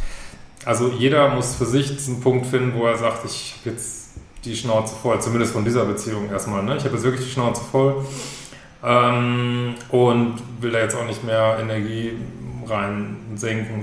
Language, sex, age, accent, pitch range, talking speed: German, male, 30-49, German, 110-130 Hz, 175 wpm